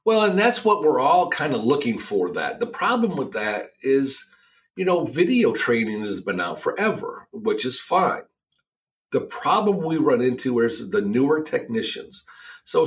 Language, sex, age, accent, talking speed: English, male, 50-69, American, 175 wpm